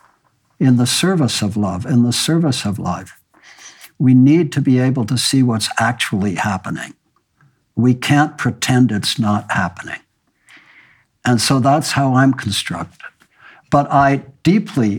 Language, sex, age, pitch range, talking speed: English, male, 60-79, 110-135 Hz, 140 wpm